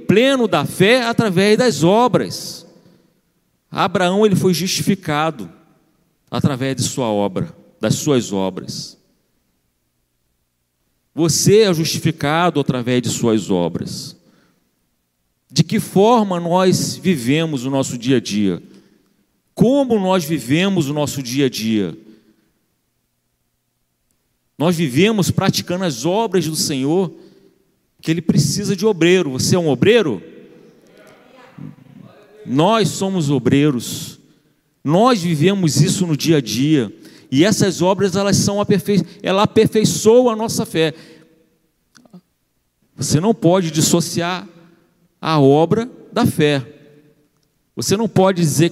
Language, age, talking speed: Portuguese, 40-59, 110 wpm